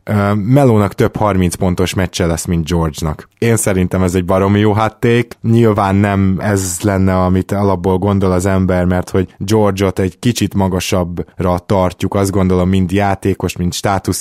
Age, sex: 20-39, male